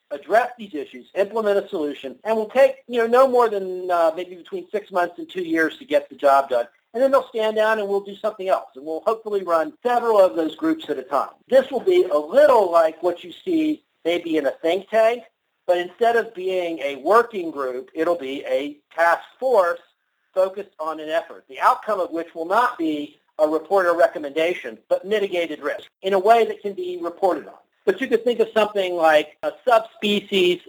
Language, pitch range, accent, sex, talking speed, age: English, 160-225 Hz, American, male, 215 wpm, 50-69